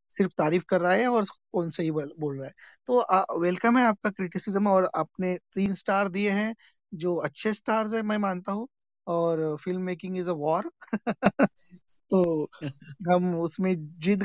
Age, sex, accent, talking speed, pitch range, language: 20-39, male, native, 115 wpm, 180-225 Hz, Hindi